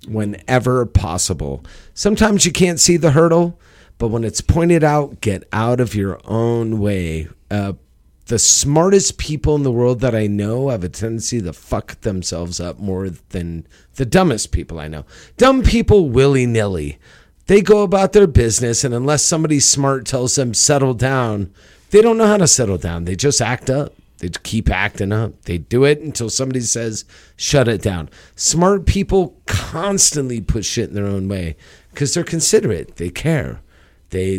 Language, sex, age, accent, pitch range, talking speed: English, male, 40-59, American, 90-135 Hz, 170 wpm